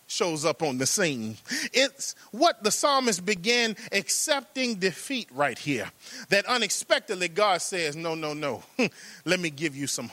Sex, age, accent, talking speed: male, 30-49, American, 155 wpm